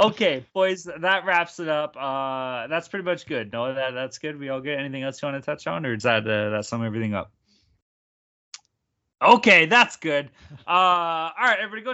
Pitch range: 115-160 Hz